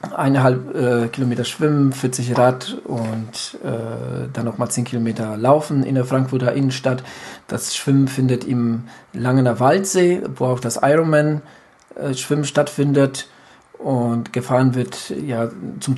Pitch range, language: 120-135 Hz, German